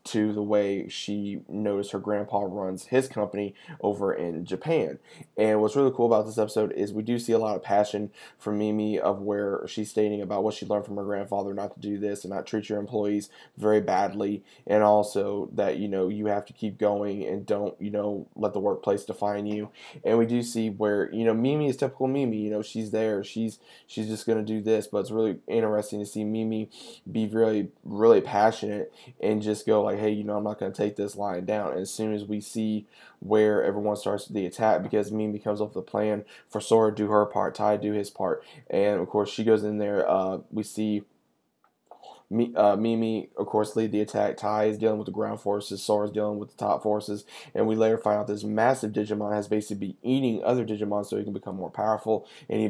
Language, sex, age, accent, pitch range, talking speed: English, male, 20-39, American, 105-110 Hz, 225 wpm